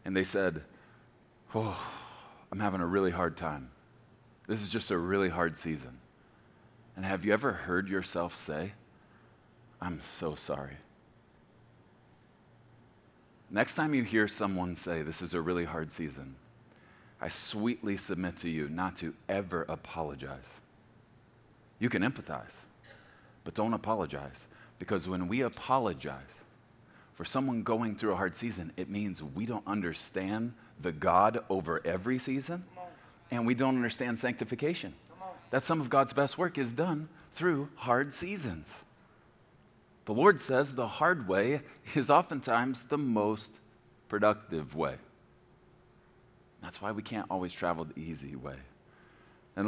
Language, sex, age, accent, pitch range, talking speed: English, male, 30-49, American, 85-125 Hz, 135 wpm